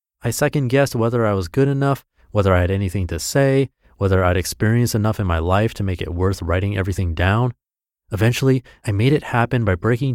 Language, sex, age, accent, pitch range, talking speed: English, male, 30-49, American, 95-130 Hz, 200 wpm